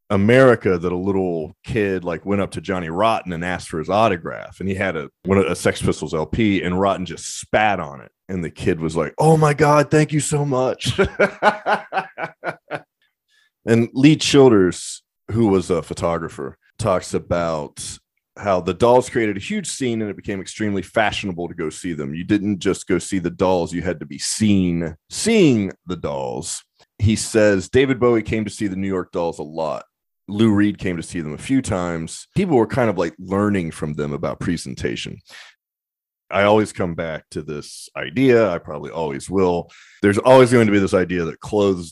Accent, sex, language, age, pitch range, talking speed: American, male, English, 30-49, 85-115 Hz, 195 wpm